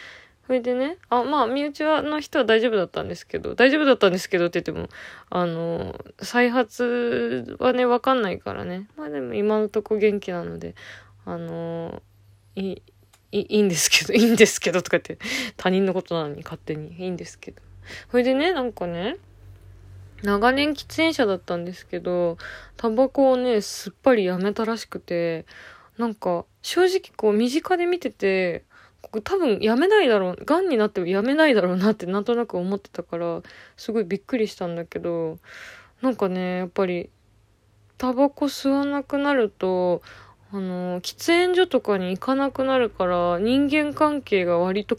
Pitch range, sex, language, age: 175-255 Hz, female, Japanese, 20-39